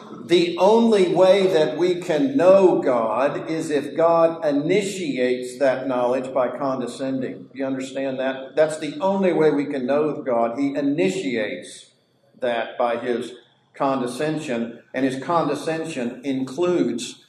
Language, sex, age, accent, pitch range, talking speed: English, male, 50-69, American, 135-165 Hz, 130 wpm